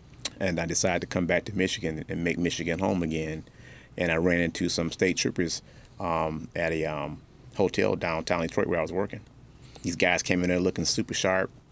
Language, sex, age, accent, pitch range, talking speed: English, male, 30-49, American, 85-95 Hz, 200 wpm